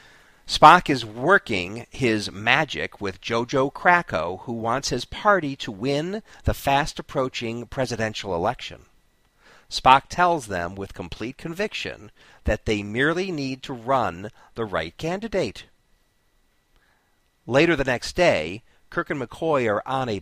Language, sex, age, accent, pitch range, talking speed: English, male, 50-69, American, 110-155 Hz, 130 wpm